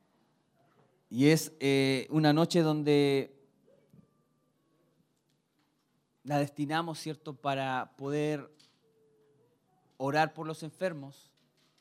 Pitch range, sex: 130-155 Hz, male